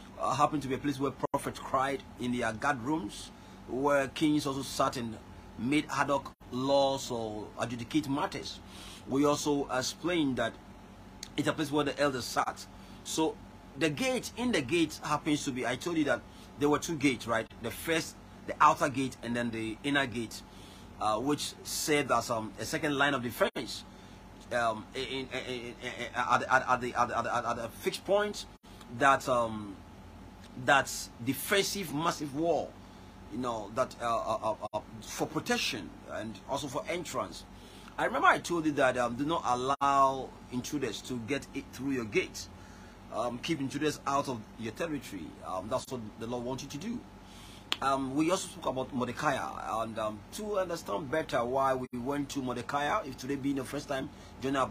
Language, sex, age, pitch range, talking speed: English, male, 30-49, 115-145 Hz, 170 wpm